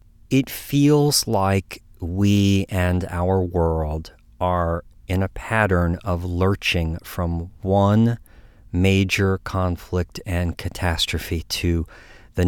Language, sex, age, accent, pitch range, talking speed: English, male, 40-59, American, 90-110 Hz, 100 wpm